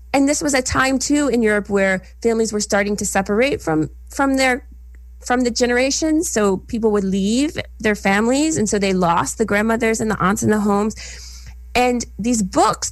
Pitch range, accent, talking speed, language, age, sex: 185-245 Hz, American, 190 wpm, English, 30-49, female